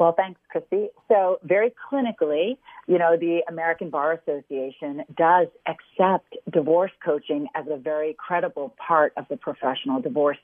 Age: 40-59